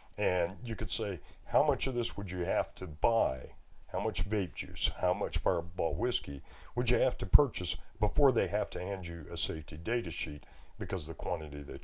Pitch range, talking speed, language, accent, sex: 75-105 Hz, 210 wpm, English, American, male